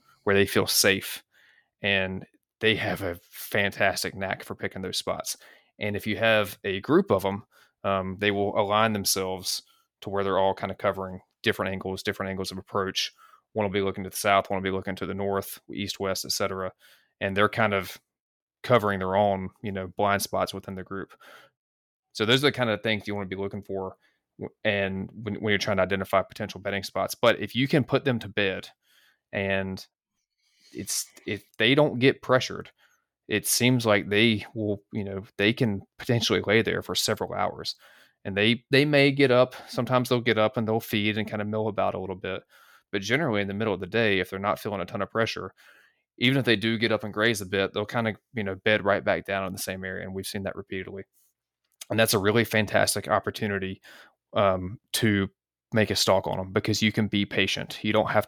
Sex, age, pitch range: male, 20-39, 95-110 Hz